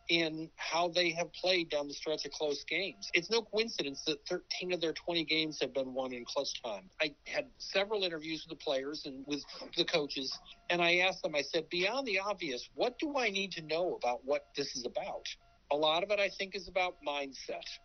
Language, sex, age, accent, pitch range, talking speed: English, male, 50-69, American, 145-185 Hz, 220 wpm